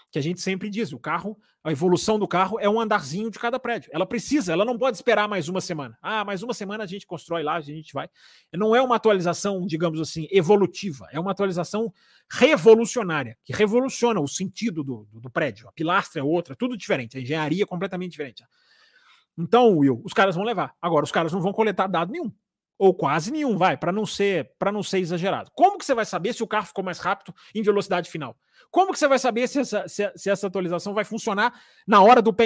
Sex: male